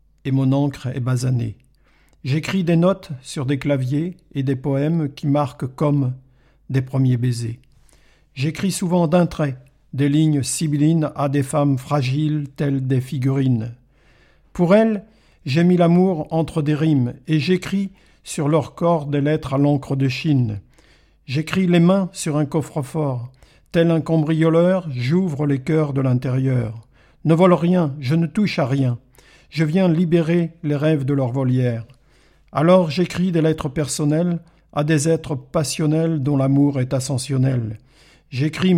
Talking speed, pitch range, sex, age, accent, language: 150 wpm, 135-160 Hz, male, 50-69, French, French